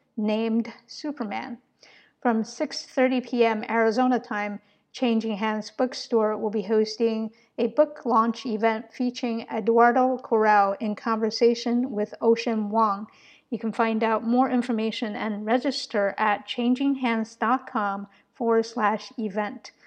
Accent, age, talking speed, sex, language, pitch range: American, 50-69, 115 wpm, female, English, 215-245 Hz